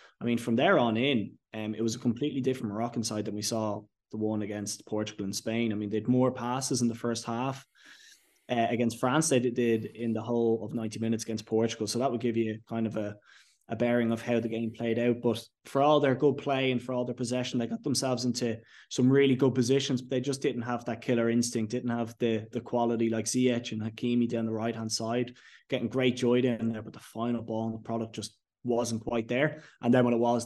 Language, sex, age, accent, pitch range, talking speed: English, male, 20-39, Irish, 110-125 Hz, 245 wpm